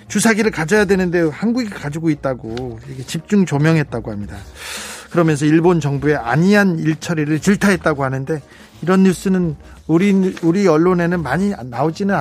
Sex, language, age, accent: male, Korean, 40-59, native